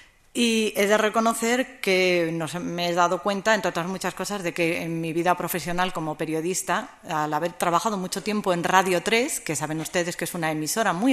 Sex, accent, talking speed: female, Spanish, 205 wpm